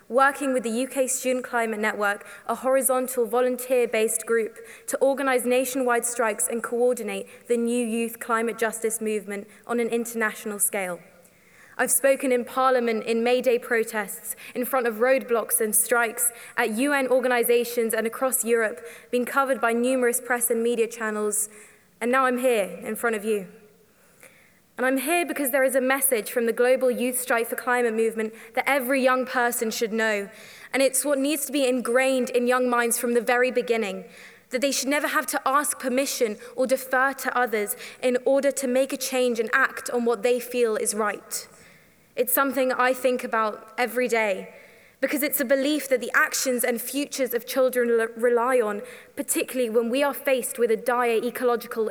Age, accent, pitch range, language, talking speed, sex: 20-39, British, 230-260 Hz, English, 180 wpm, female